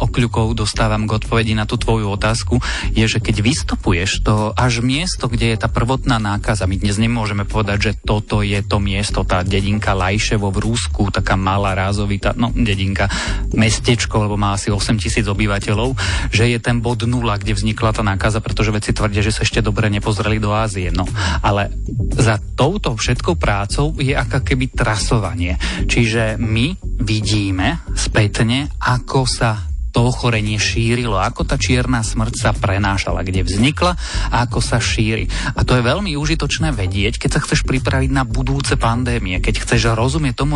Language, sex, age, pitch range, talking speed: Slovak, male, 30-49, 100-120 Hz, 165 wpm